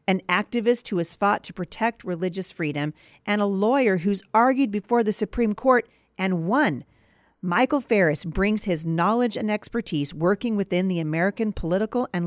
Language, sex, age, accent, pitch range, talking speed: English, female, 40-59, American, 170-230 Hz, 160 wpm